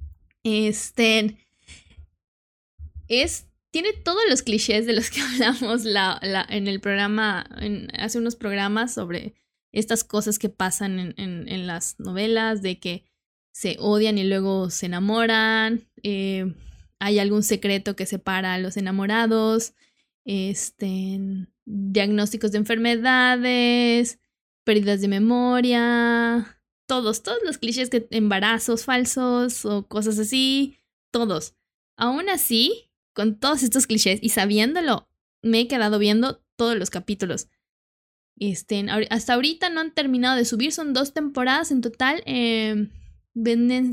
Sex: female